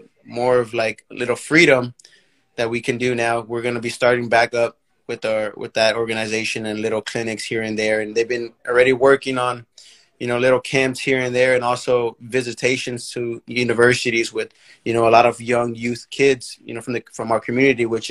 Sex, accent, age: male, American, 20-39